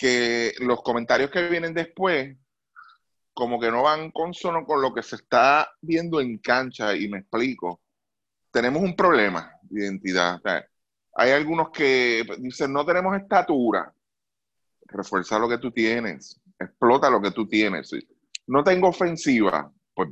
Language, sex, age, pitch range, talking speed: Spanish, male, 30-49, 115-165 Hz, 155 wpm